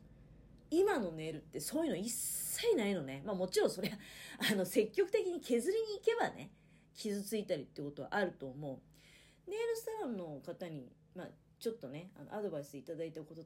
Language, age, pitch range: Japanese, 40-59, 170-270 Hz